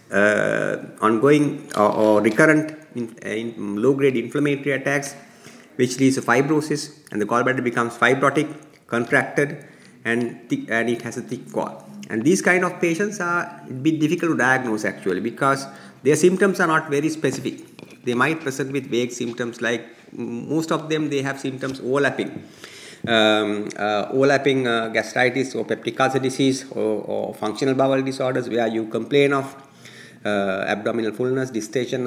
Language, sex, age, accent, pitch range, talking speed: English, male, 50-69, Indian, 115-140 Hz, 160 wpm